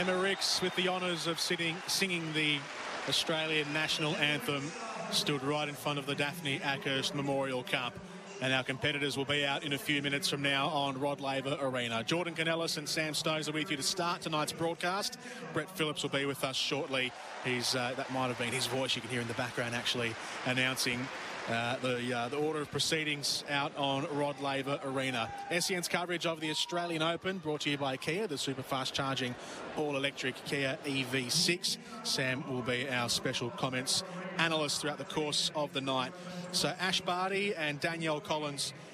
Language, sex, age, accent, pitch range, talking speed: English, male, 30-49, Australian, 135-165 Hz, 190 wpm